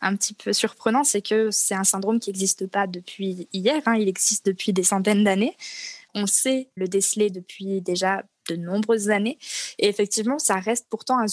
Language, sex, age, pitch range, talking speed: French, female, 20-39, 190-220 Hz, 190 wpm